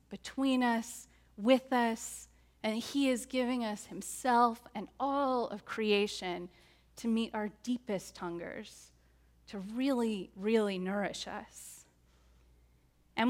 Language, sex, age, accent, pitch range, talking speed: English, female, 30-49, American, 200-265 Hz, 115 wpm